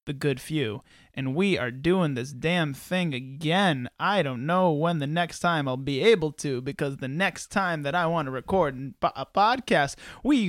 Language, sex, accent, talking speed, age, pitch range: English, male, American, 195 wpm, 20-39, 155-220 Hz